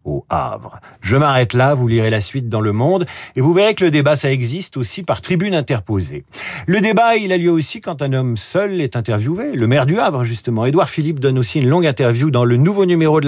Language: French